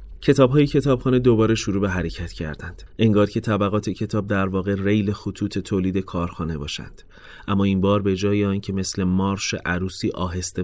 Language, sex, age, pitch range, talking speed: Persian, male, 30-49, 85-110 Hz, 160 wpm